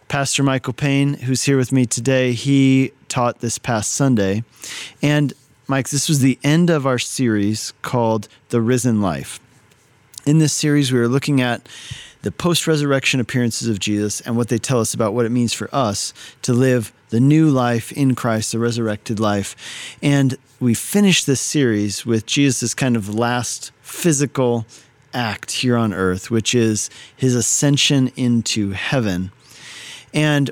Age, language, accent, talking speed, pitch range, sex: 40-59, English, American, 160 wpm, 115-140 Hz, male